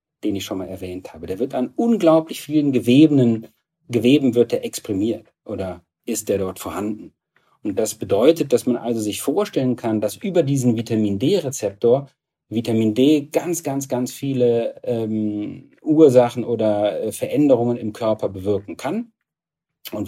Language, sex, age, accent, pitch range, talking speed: German, male, 40-59, German, 105-135 Hz, 145 wpm